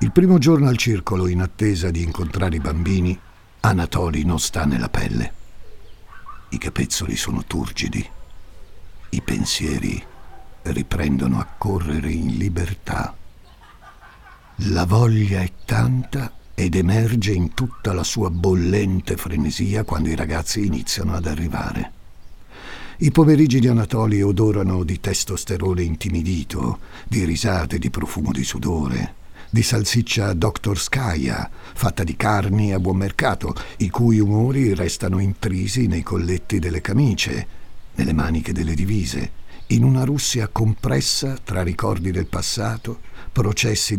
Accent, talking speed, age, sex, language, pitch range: native, 125 wpm, 60-79, male, Italian, 85-110 Hz